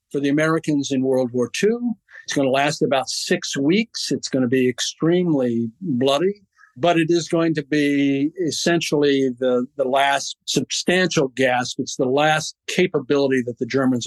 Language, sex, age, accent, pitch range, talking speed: English, male, 50-69, American, 125-150 Hz, 160 wpm